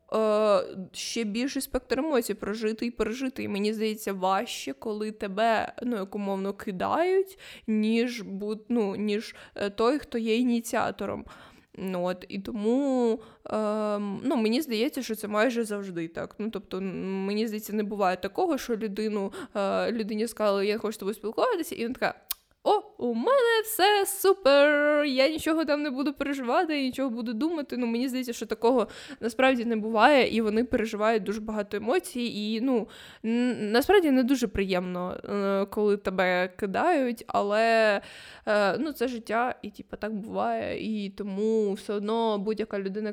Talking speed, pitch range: 150 wpm, 205-245 Hz